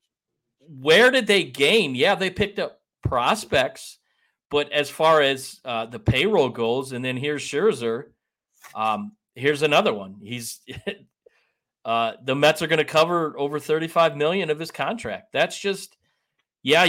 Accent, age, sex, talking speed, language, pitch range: American, 40-59, male, 155 wpm, English, 130-185 Hz